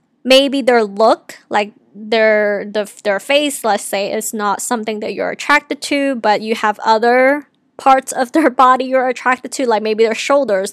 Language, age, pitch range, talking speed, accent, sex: English, 20-39, 215-265 Hz, 175 wpm, American, female